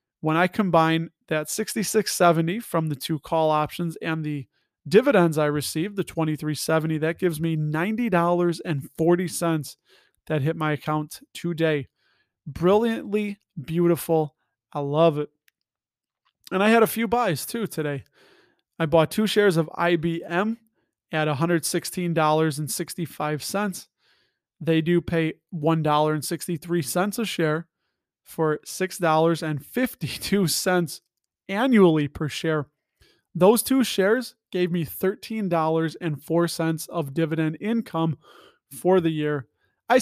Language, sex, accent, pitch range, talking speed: English, male, American, 155-180 Hz, 105 wpm